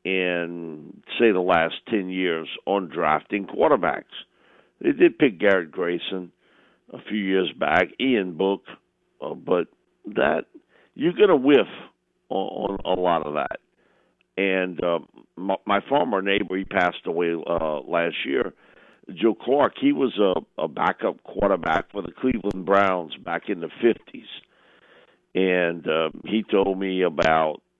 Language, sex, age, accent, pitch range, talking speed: English, male, 50-69, American, 90-115 Hz, 145 wpm